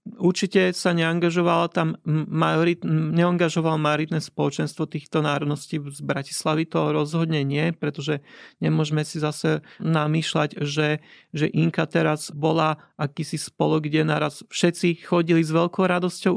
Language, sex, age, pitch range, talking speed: Slovak, male, 40-59, 160-185 Hz, 125 wpm